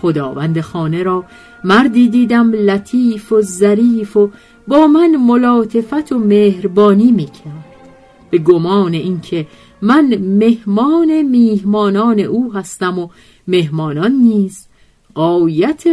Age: 50-69